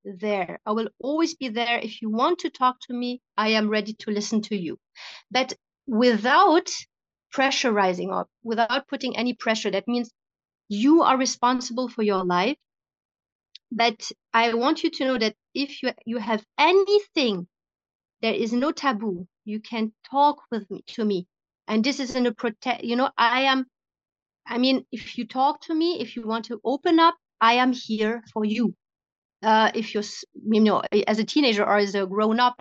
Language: English